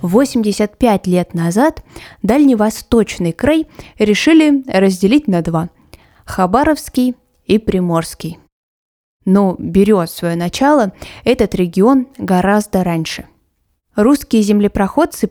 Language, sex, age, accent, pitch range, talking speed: Russian, female, 20-39, native, 180-235 Hz, 85 wpm